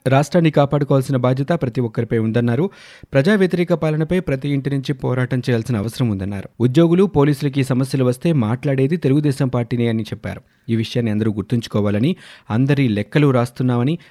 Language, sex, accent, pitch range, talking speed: Telugu, male, native, 110-140 Hz, 135 wpm